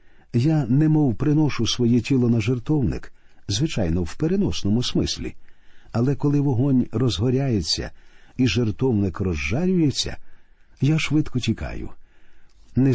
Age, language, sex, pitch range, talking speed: 50-69, Ukrainian, male, 100-135 Hz, 100 wpm